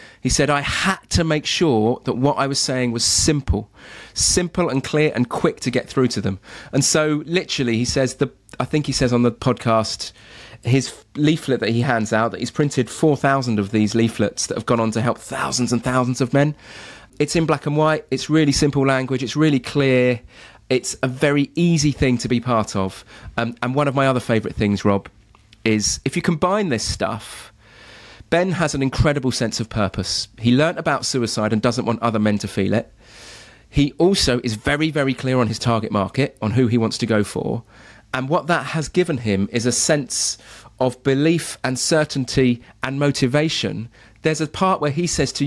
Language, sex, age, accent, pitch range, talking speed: English, male, 30-49, British, 115-145 Hz, 205 wpm